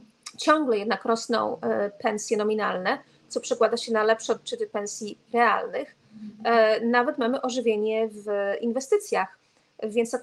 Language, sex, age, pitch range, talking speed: Polish, female, 30-49, 215-245 Hz, 115 wpm